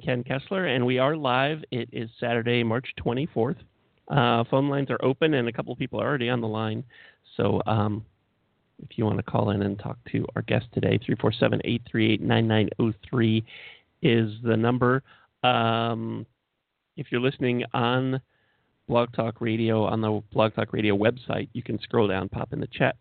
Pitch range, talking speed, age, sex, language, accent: 110-130 Hz, 170 wpm, 40-59, male, English, American